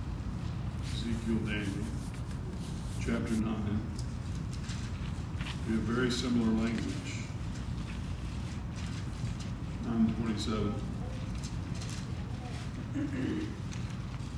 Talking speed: 40 wpm